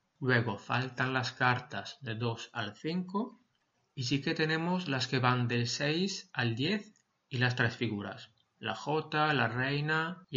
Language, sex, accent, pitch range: Spanish, male, Spanish, 120-145 Hz